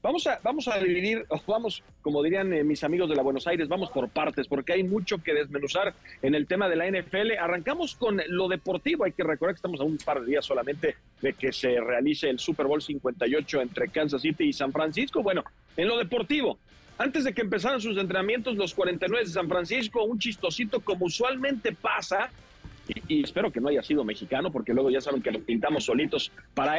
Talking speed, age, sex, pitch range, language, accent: 210 wpm, 40-59, male, 155-220 Hz, Spanish, Mexican